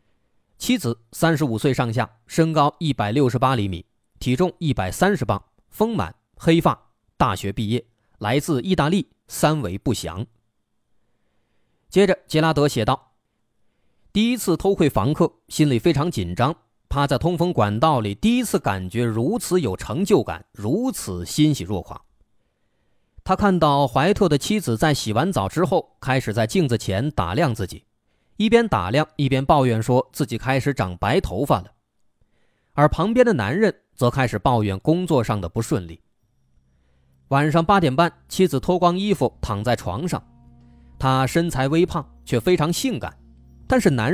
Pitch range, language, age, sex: 105-165 Hz, Chinese, 20-39, male